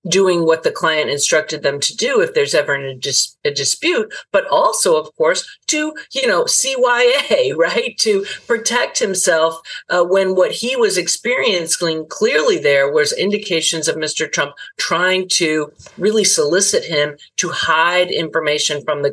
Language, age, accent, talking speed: English, 50-69, American, 155 wpm